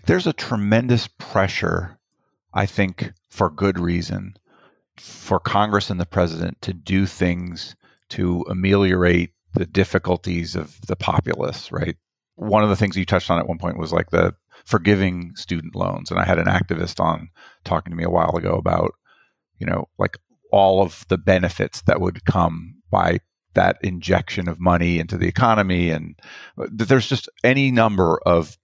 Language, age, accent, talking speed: English, 40-59, American, 165 wpm